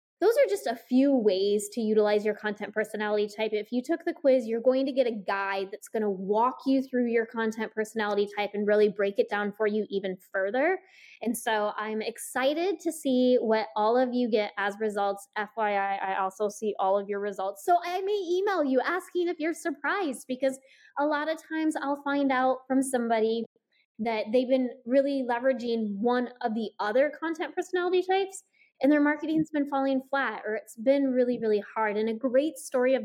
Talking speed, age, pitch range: 200 wpm, 10-29, 215-285 Hz